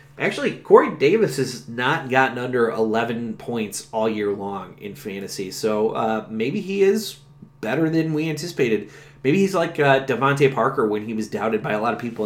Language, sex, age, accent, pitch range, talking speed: English, male, 30-49, American, 115-140 Hz, 185 wpm